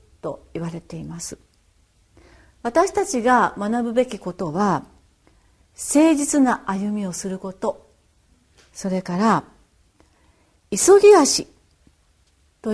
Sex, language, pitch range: female, Japanese, 185-305 Hz